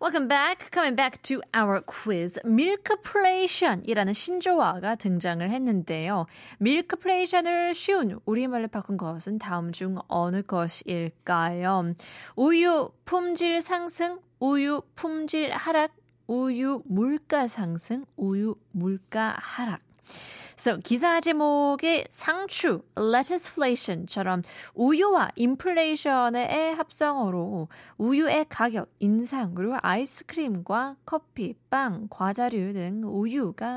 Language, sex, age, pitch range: Korean, female, 20-39, 185-275 Hz